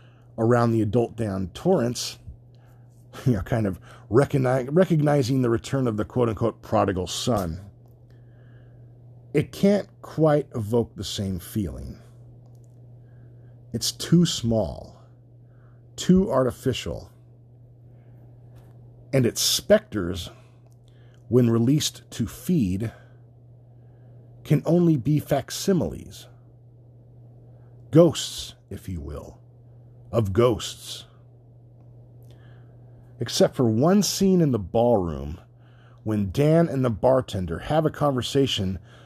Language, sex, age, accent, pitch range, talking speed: English, male, 50-69, American, 115-125 Hz, 90 wpm